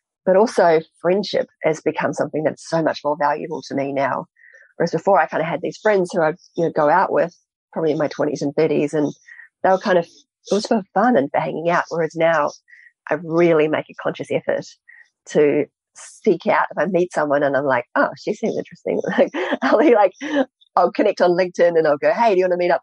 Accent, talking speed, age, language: Australian, 225 wpm, 30-49, English